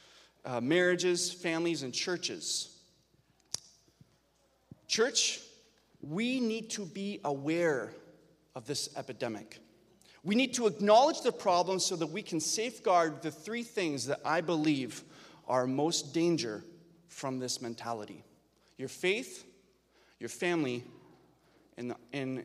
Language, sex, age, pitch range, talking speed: English, male, 30-49, 135-185 Hz, 115 wpm